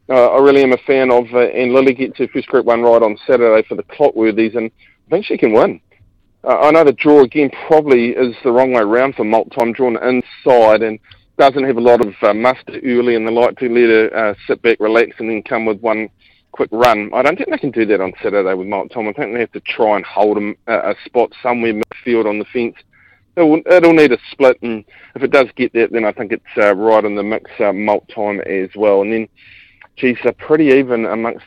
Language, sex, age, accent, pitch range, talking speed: English, male, 40-59, Australian, 110-130 Hz, 250 wpm